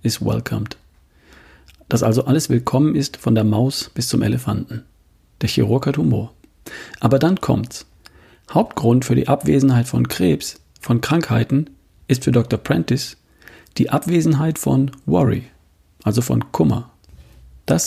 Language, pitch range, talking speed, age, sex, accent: German, 105-135 Hz, 135 wpm, 40-59, male, German